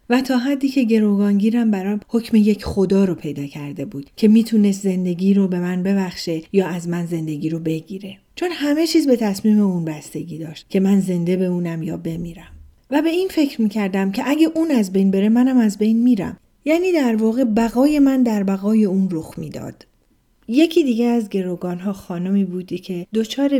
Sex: female